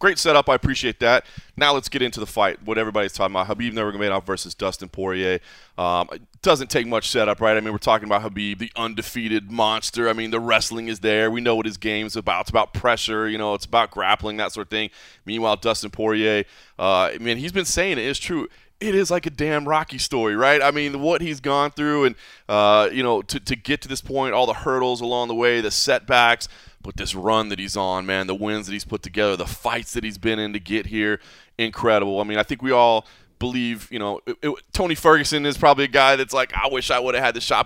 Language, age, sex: English, 20-39, male